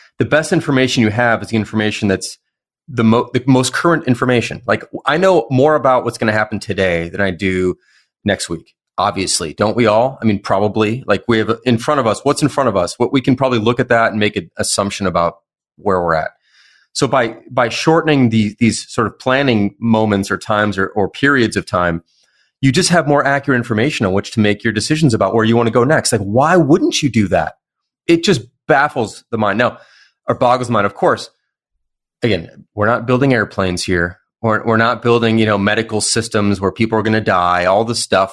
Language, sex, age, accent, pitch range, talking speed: English, male, 30-49, American, 100-130 Hz, 220 wpm